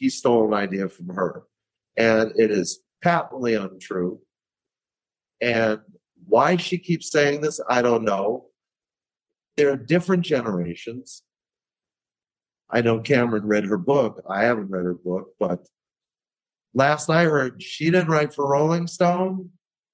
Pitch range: 110-160 Hz